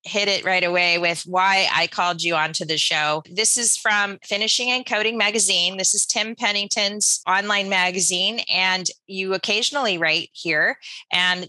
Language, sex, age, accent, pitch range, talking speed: English, female, 30-49, American, 165-205 Hz, 160 wpm